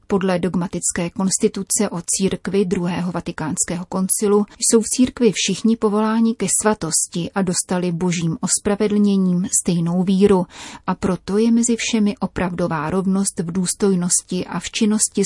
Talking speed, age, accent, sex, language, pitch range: 130 wpm, 30-49, native, female, Czech, 180-205 Hz